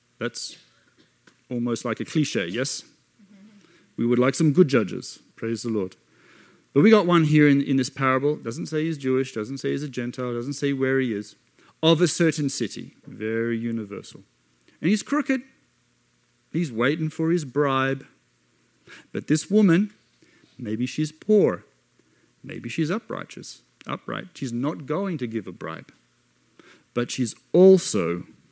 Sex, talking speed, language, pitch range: male, 150 wpm, English, 115-160 Hz